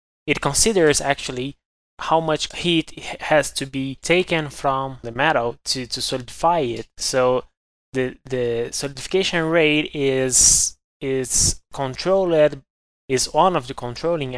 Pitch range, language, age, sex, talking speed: 130-160 Hz, English, 20-39, male, 125 wpm